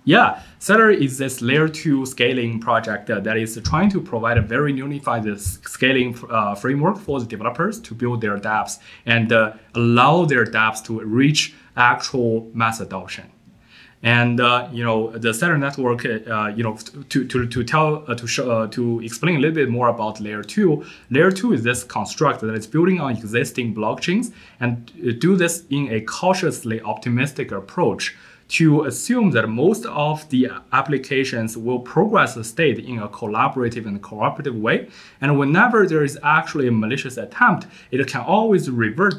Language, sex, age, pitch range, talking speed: English, male, 20-39, 110-145 Hz, 170 wpm